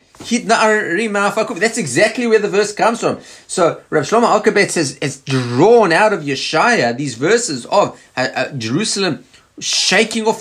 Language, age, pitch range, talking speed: English, 30-49, 145-220 Hz, 140 wpm